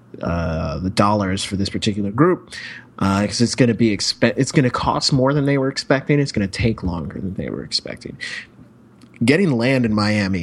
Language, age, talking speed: English, 30-49, 200 wpm